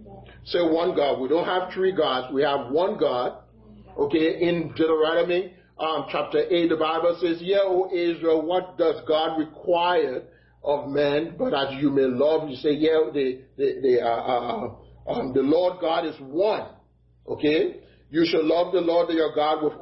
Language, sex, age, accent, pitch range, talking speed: English, male, 40-59, American, 140-190 Hz, 180 wpm